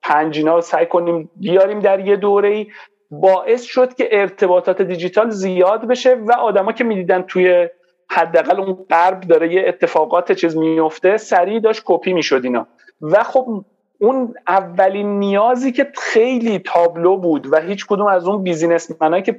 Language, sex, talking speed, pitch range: Persian, male, 155 wpm, 165-220 Hz